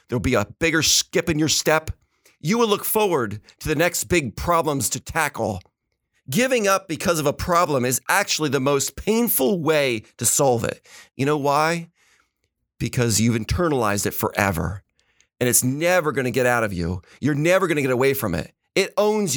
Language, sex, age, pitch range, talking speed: English, male, 40-59, 130-185 Hz, 190 wpm